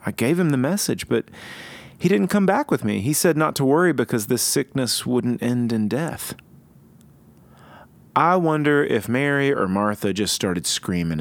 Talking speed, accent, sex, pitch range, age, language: 175 wpm, American, male, 115-170 Hz, 30-49, English